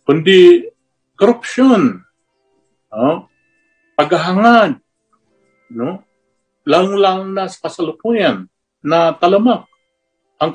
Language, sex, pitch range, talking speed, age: Filipino, male, 115-185 Hz, 75 wpm, 50-69